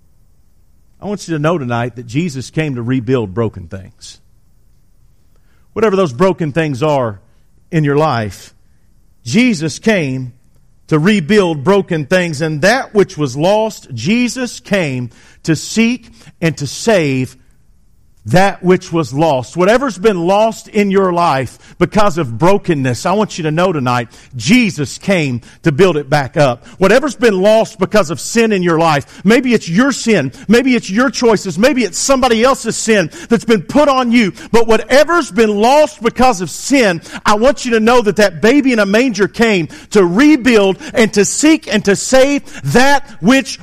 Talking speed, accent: 165 wpm, American